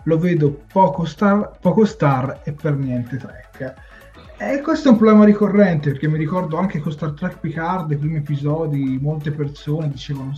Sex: male